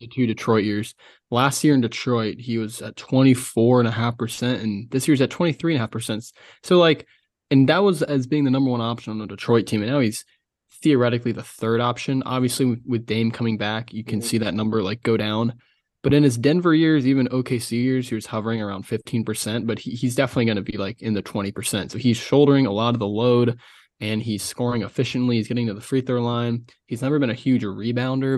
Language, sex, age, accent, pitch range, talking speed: English, male, 20-39, American, 110-130 Hz, 230 wpm